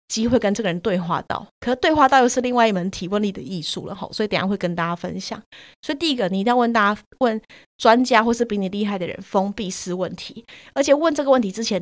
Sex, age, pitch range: female, 20-39, 195-250 Hz